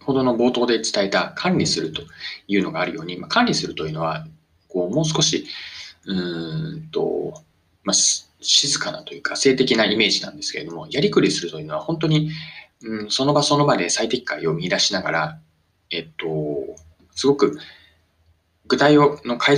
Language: Japanese